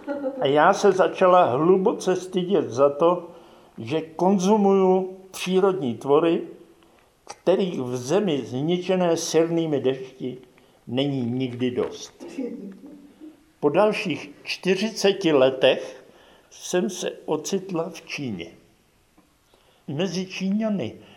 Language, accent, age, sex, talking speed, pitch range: Czech, native, 60-79, male, 90 wpm, 150-195 Hz